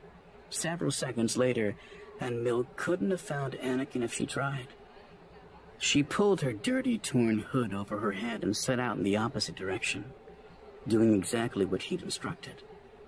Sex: male